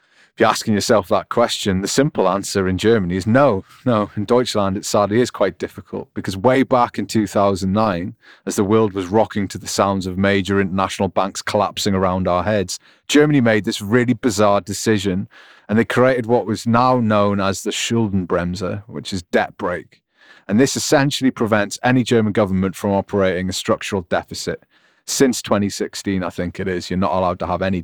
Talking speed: 185 wpm